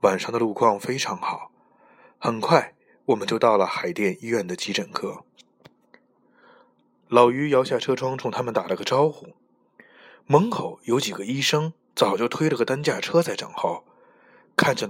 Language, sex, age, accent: Chinese, male, 20-39, native